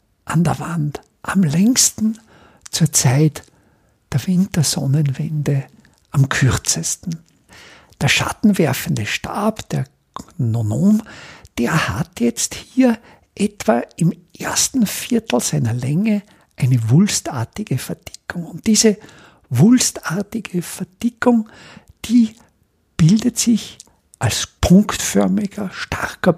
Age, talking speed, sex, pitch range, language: 50-69, 90 wpm, male, 150-210 Hz, German